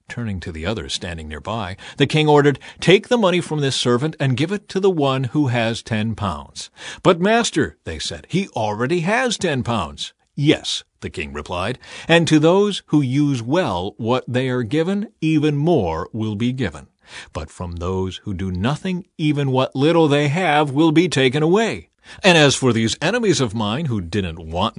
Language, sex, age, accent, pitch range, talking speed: English, male, 50-69, American, 100-155 Hz, 190 wpm